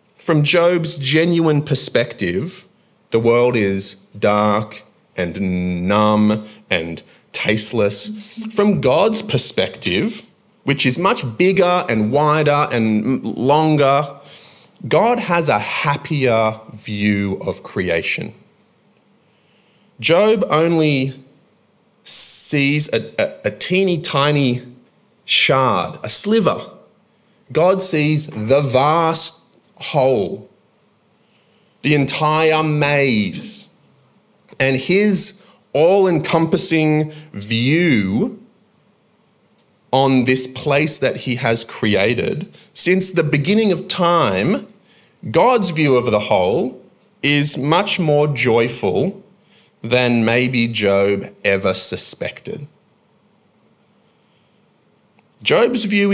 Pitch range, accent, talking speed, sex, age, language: 125-190 Hz, Australian, 85 wpm, male, 30-49, English